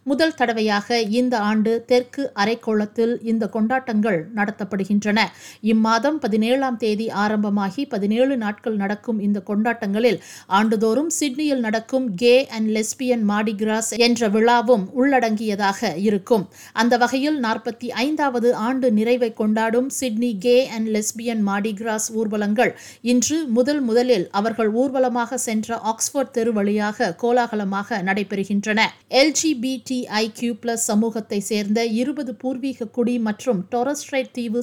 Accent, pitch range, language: native, 200-245 Hz, Tamil